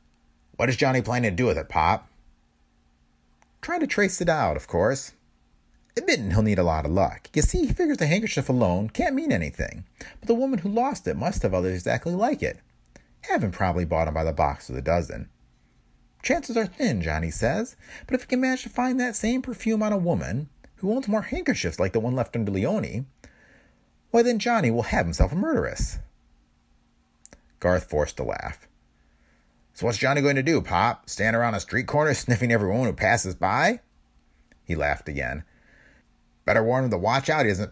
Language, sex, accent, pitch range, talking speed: English, male, American, 80-135 Hz, 195 wpm